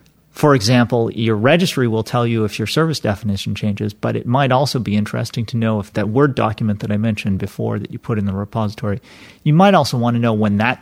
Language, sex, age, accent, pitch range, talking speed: English, male, 30-49, American, 105-120 Hz, 235 wpm